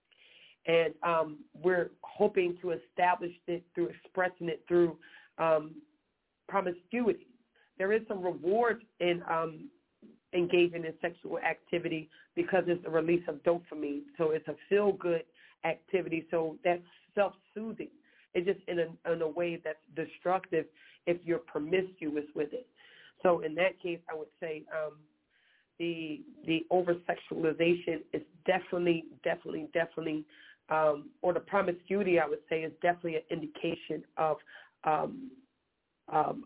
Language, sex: English, female